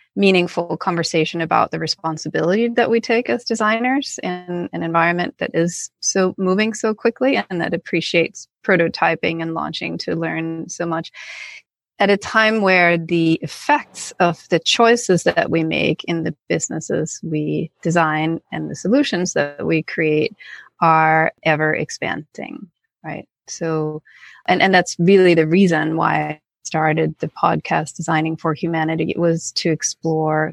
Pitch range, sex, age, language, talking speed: 160-185 Hz, female, 30-49, English, 145 wpm